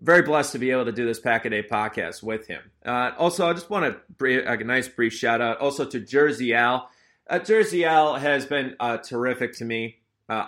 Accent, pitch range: American, 115-150 Hz